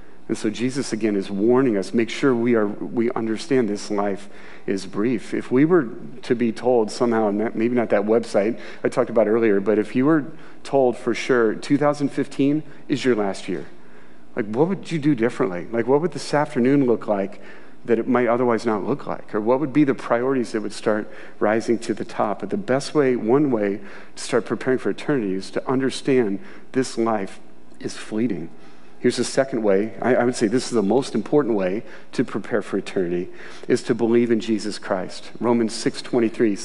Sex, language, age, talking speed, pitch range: male, English, 40-59, 200 wpm, 110-130 Hz